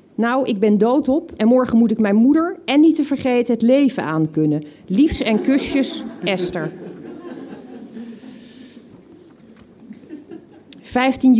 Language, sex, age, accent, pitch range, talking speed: Dutch, female, 40-59, Dutch, 195-265 Hz, 115 wpm